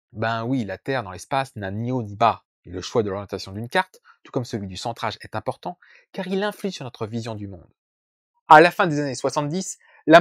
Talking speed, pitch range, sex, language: 235 wpm, 120-190 Hz, male, French